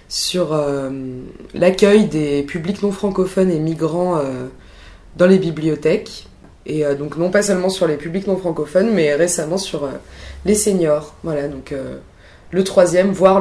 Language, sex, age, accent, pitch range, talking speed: French, female, 20-39, French, 140-175 Hz, 160 wpm